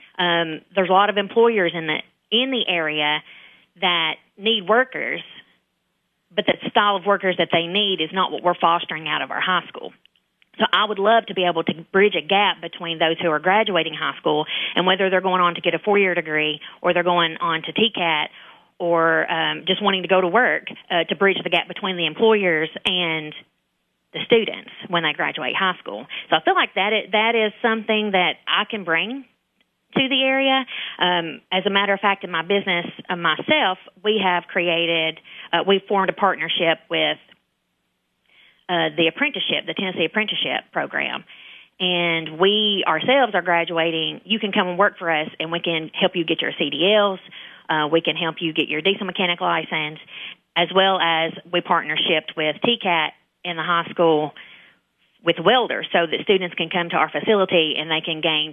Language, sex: English, female